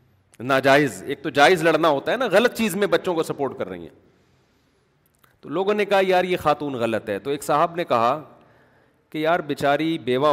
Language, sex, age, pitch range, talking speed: Urdu, male, 40-59, 140-215 Hz, 205 wpm